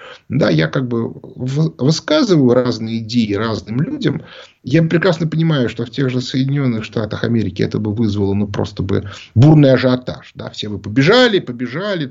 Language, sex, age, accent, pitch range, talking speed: Russian, male, 30-49, native, 125-175 Hz, 160 wpm